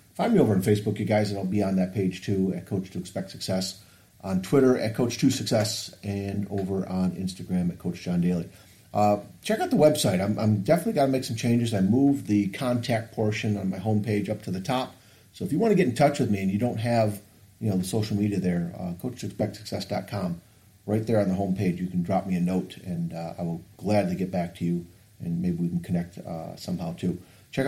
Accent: American